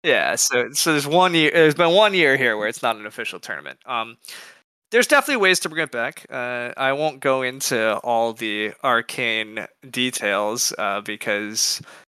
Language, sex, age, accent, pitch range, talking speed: English, male, 20-39, American, 115-140 Hz, 180 wpm